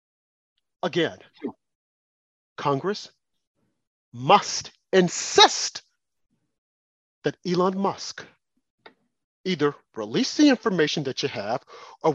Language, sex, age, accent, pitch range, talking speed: English, male, 40-59, American, 145-190 Hz, 75 wpm